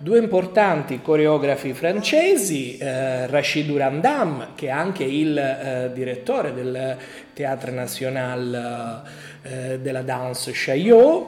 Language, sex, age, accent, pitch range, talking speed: Italian, male, 30-49, native, 130-195 Hz, 105 wpm